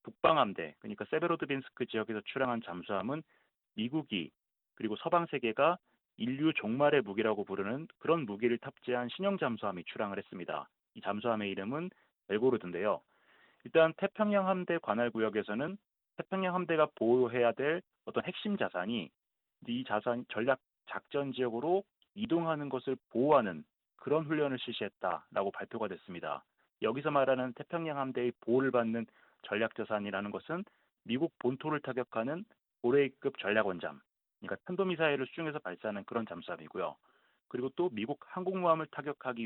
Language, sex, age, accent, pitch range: Korean, male, 30-49, native, 115-170 Hz